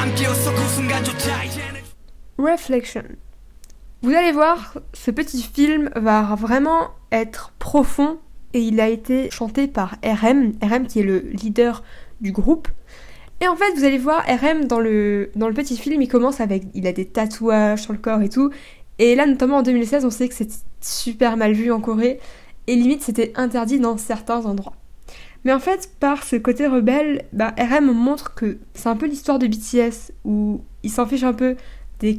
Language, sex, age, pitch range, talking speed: French, female, 10-29, 215-265 Hz, 175 wpm